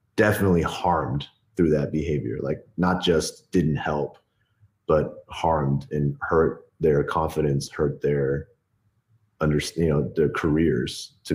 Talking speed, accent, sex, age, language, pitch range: 115 wpm, American, male, 30-49, English, 80-100 Hz